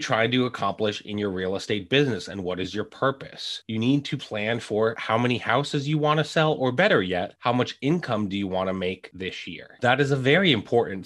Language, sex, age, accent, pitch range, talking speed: English, male, 30-49, American, 105-145 Hz, 235 wpm